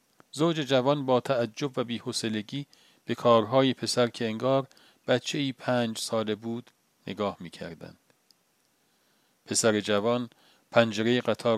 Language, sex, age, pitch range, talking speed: Persian, male, 40-59, 110-130 Hz, 120 wpm